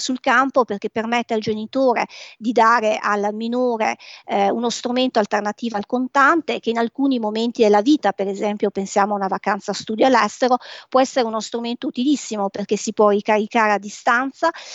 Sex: female